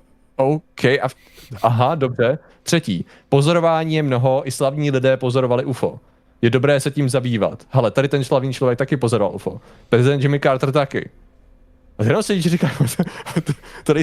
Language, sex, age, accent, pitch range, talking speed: Czech, male, 20-39, native, 115-145 Hz, 140 wpm